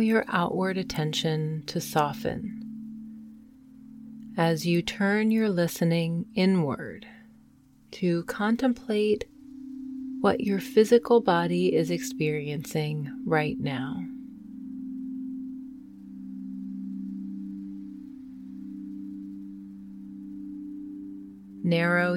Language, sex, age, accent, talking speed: English, female, 30-49, American, 60 wpm